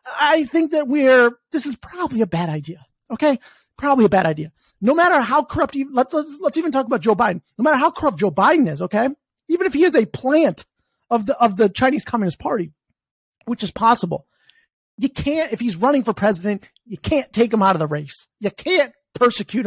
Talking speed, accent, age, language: 215 wpm, American, 30-49, English